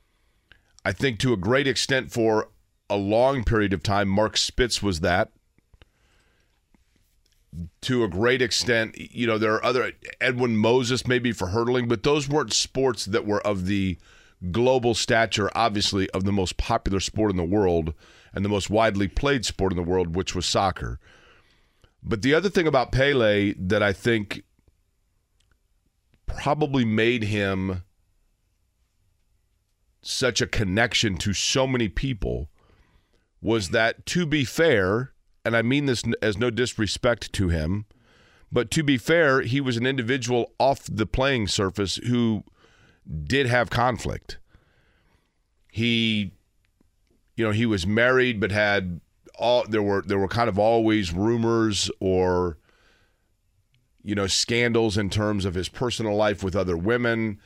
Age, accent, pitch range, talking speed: 40-59, American, 95-120 Hz, 145 wpm